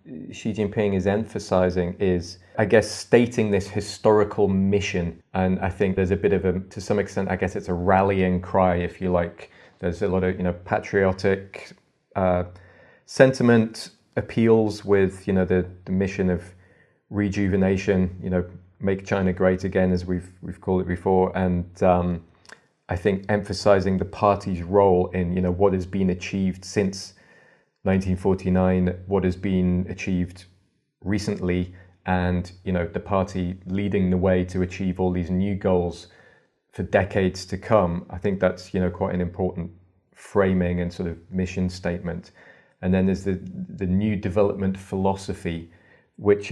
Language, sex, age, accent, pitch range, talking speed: English, male, 30-49, British, 90-100 Hz, 160 wpm